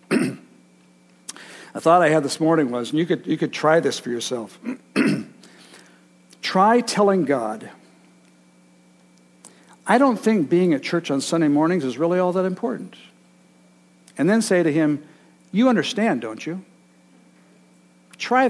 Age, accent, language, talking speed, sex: 60-79, American, English, 140 wpm, male